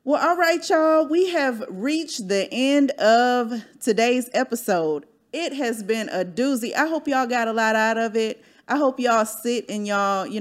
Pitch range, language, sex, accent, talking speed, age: 185-245 Hz, English, female, American, 190 wpm, 30-49